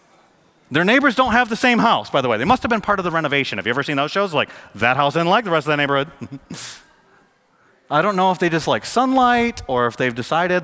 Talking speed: 260 wpm